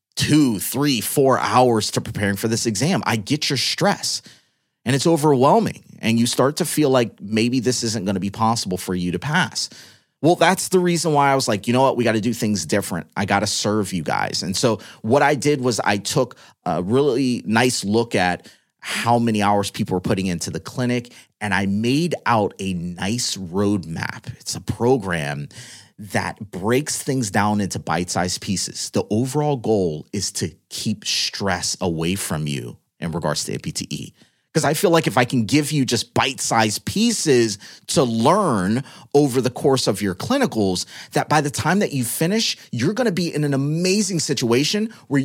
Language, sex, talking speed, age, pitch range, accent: English, male, 190 wpm, 30-49, 105-145 Hz, American